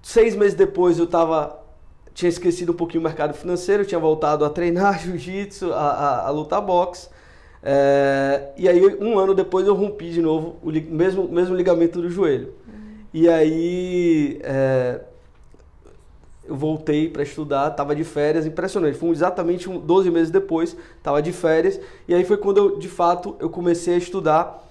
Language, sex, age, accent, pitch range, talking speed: Portuguese, male, 20-39, Brazilian, 145-175 Hz, 170 wpm